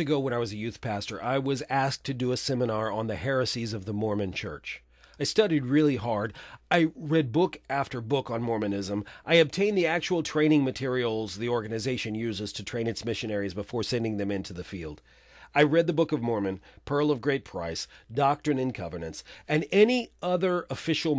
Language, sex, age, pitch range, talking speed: English, male, 40-59, 105-145 Hz, 195 wpm